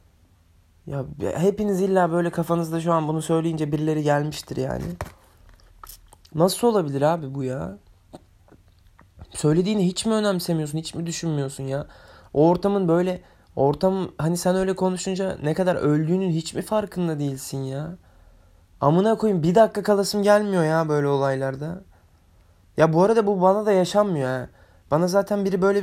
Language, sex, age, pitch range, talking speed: Turkish, male, 20-39, 120-180 Hz, 140 wpm